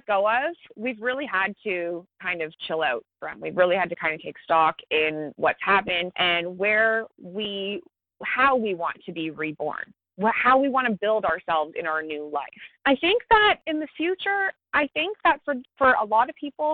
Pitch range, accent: 185-270 Hz, American